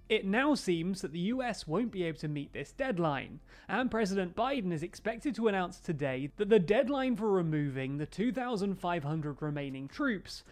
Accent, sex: British, male